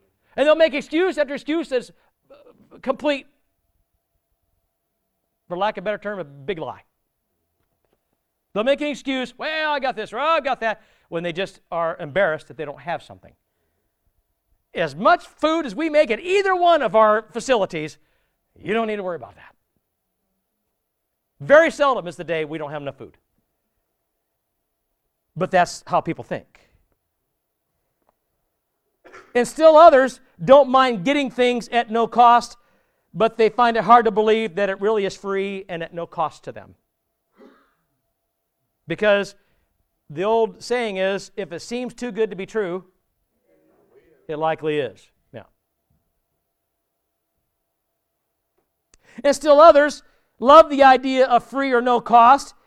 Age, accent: 50-69, American